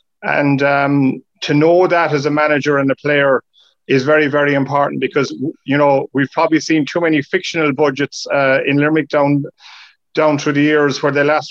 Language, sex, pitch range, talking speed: English, male, 140-155 Hz, 190 wpm